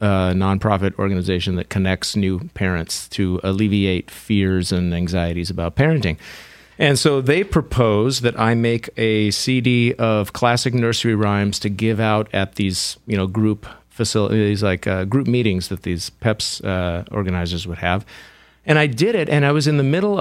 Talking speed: 170 wpm